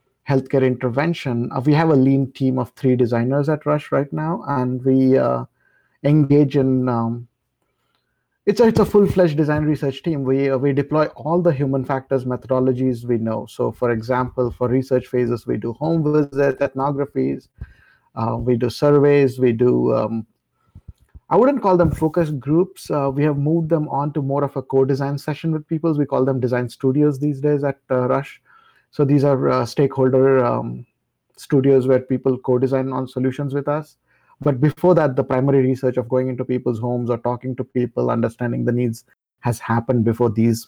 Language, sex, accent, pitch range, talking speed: English, male, Indian, 120-145 Hz, 180 wpm